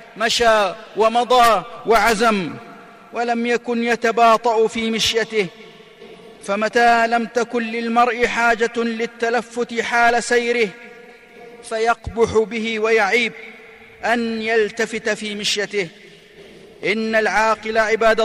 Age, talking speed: 40-59, 85 wpm